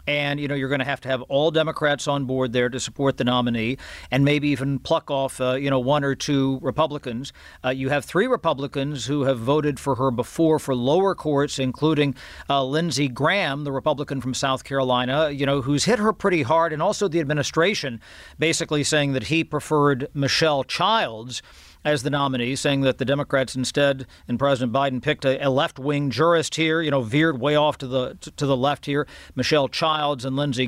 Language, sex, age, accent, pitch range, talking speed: English, male, 50-69, American, 135-155 Hz, 205 wpm